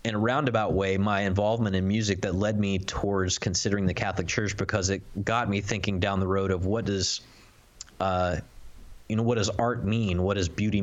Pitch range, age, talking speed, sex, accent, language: 95-110 Hz, 20-39, 205 wpm, male, American, English